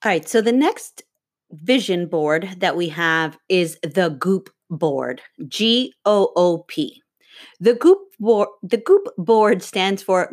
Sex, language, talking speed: female, English, 135 wpm